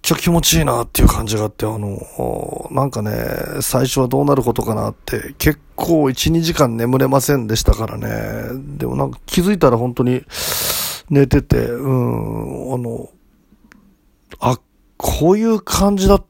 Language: Japanese